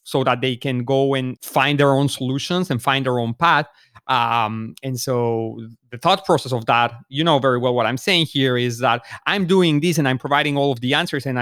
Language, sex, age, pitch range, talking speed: English, male, 30-49, 130-180 Hz, 230 wpm